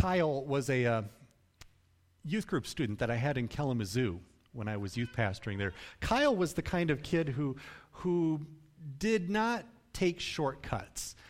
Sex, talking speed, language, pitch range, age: male, 160 wpm, English, 125-190 Hz, 40-59